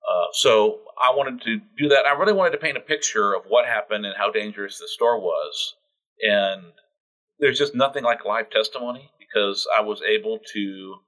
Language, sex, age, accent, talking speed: English, male, 40-59, American, 190 wpm